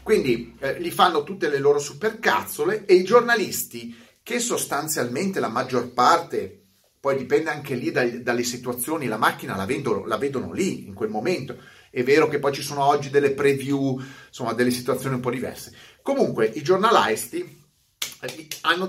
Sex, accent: male, native